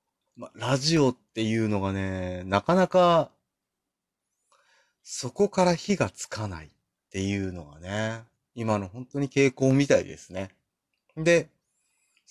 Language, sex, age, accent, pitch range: Japanese, male, 30-49, native, 95-145 Hz